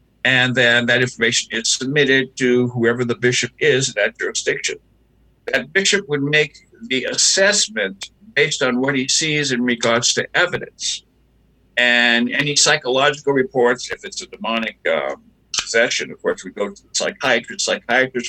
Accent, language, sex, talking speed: American, English, male, 155 wpm